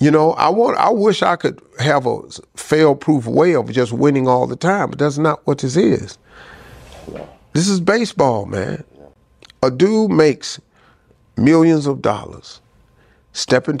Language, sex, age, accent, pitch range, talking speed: English, male, 50-69, American, 120-165 Hz, 155 wpm